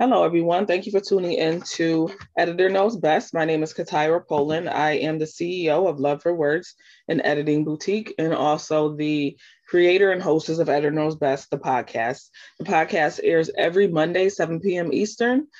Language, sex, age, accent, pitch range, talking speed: English, female, 20-39, American, 150-180 Hz, 180 wpm